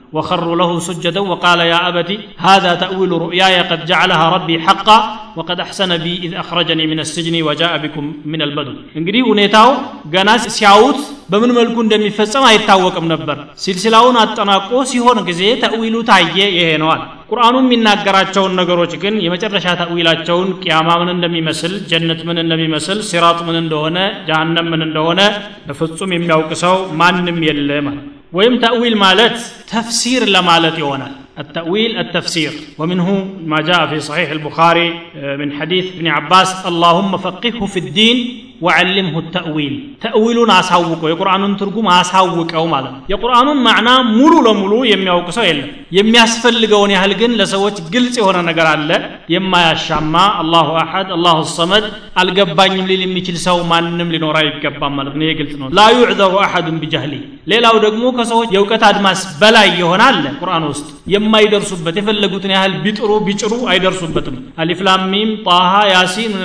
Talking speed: 130 wpm